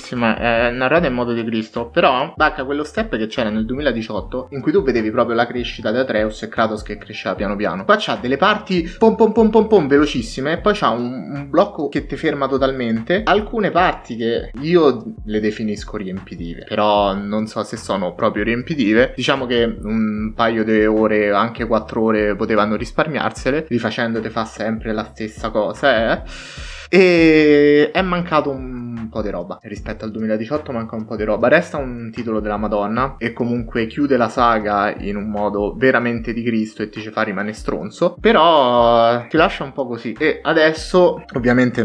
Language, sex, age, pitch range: Italian, male, 20-39, 110-135 Hz